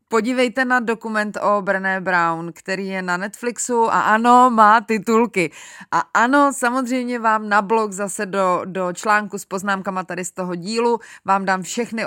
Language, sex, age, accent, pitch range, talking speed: Czech, female, 30-49, native, 190-245 Hz, 165 wpm